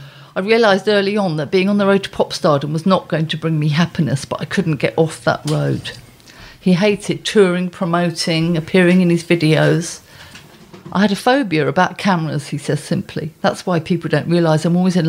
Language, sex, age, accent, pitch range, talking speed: English, female, 50-69, British, 155-185 Hz, 205 wpm